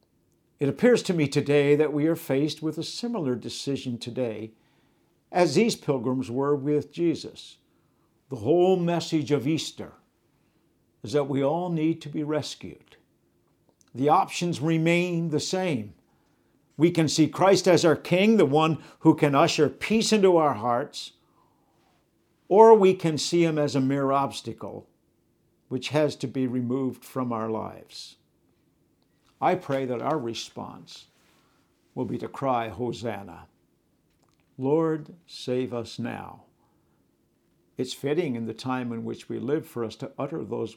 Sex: male